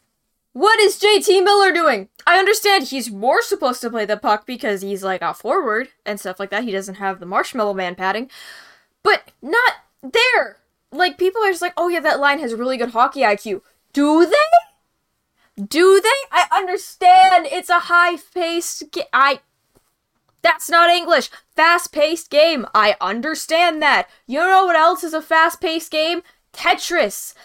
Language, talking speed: English, 165 wpm